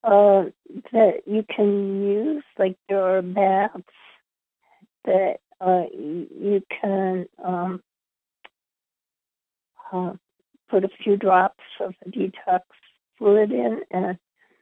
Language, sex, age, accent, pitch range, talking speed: English, female, 50-69, American, 180-210 Hz, 105 wpm